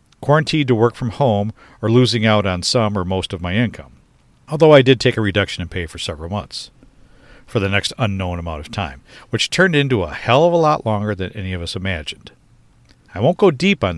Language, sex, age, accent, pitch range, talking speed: English, male, 50-69, American, 95-130 Hz, 225 wpm